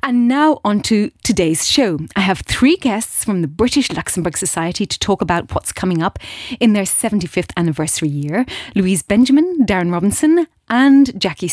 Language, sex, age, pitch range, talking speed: English, female, 30-49, 175-240 Hz, 165 wpm